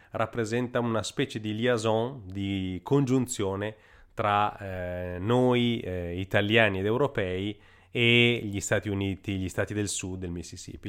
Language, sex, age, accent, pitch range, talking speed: Italian, male, 30-49, native, 95-120 Hz, 130 wpm